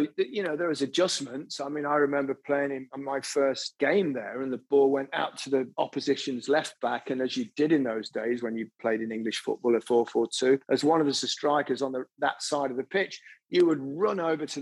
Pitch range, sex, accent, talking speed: 130-165 Hz, male, British, 230 wpm